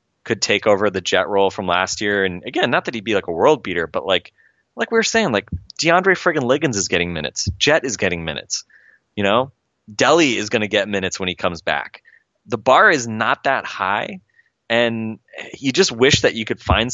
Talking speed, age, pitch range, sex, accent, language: 220 wpm, 20-39, 95-120 Hz, male, American, English